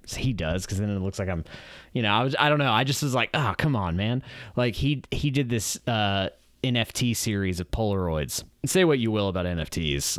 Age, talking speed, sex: 20-39, 225 wpm, male